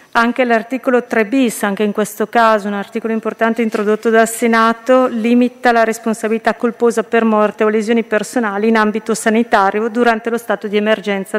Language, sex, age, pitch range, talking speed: Italian, female, 40-59, 205-230 Hz, 165 wpm